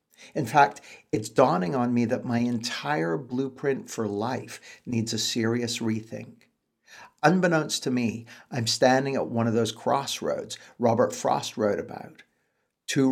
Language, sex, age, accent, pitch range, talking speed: English, male, 50-69, American, 110-130 Hz, 140 wpm